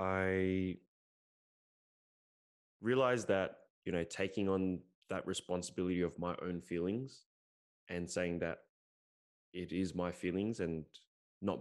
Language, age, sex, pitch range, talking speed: English, 10-29, male, 85-95 Hz, 115 wpm